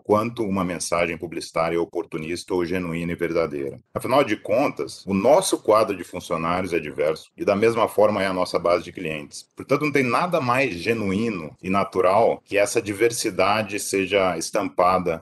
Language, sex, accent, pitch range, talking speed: Portuguese, male, Brazilian, 85-105 Hz, 165 wpm